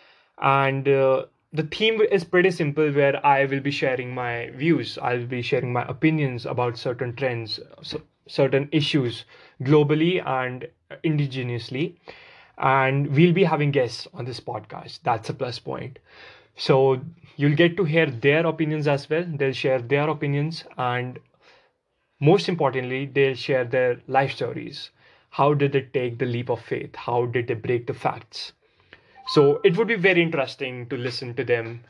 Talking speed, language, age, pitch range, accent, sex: 160 wpm, English, 20-39, 125-150 Hz, Indian, male